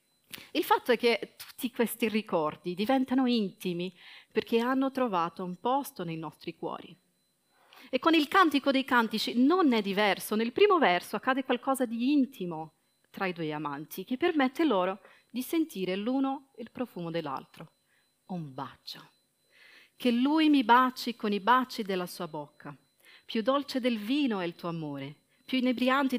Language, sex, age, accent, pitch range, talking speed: Italian, female, 40-59, native, 180-260 Hz, 155 wpm